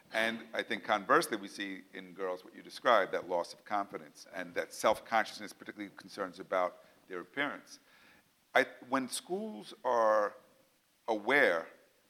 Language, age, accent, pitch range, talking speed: English, 50-69, American, 100-120 Hz, 135 wpm